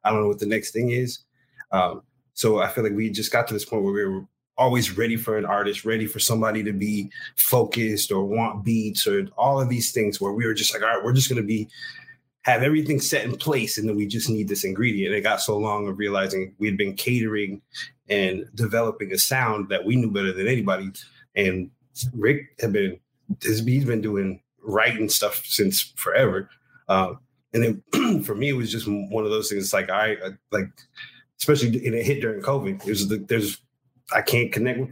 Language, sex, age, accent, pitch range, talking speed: English, male, 30-49, American, 105-130 Hz, 210 wpm